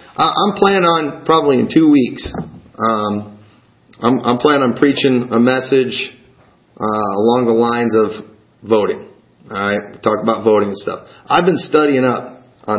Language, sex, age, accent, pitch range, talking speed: English, male, 40-59, American, 110-140 Hz, 155 wpm